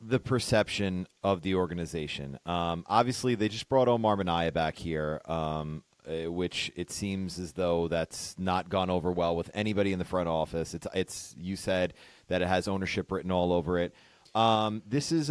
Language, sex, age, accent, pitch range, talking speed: English, male, 30-49, American, 95-135 Hz, 180 wpm